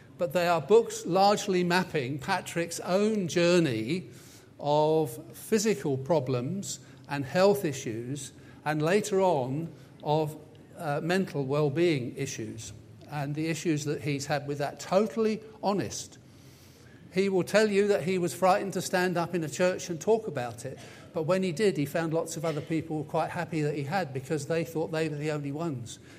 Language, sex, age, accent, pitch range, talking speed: English, male, 50-69, British, 140-185 Hz, 170 wpm